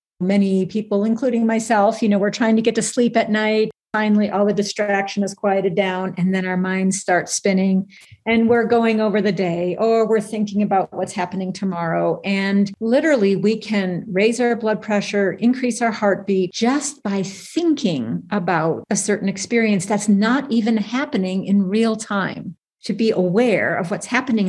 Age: 50-69